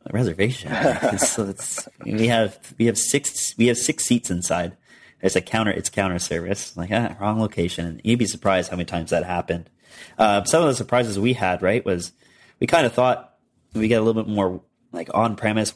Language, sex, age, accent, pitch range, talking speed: English, male, 30-49, American, 95-115 Hz, 215 wpm